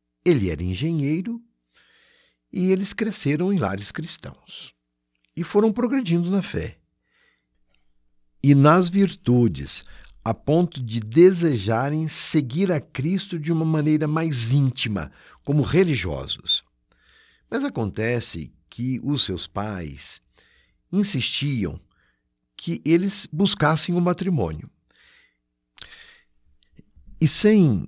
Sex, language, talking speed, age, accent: male, Portuguese, 95 wpm, 60-79, Brazilian